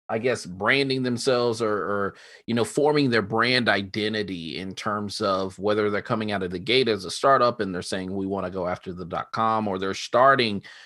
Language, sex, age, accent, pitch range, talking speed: English, male, 30-49, American, 100-125 Hz, 215 wpm